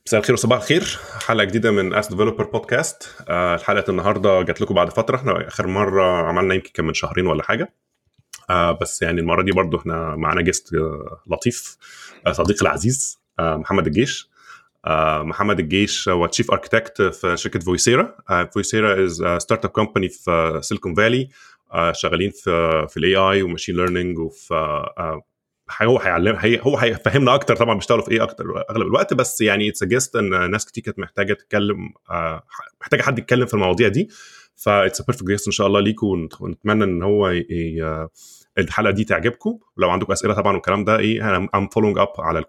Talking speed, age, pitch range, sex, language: 150 wpm, 20-39, 85-110 Hz, male, English